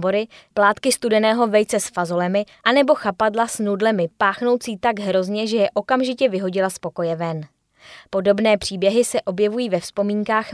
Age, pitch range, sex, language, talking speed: 20-39, 185-225 Hz, female, Czech, 140 wpm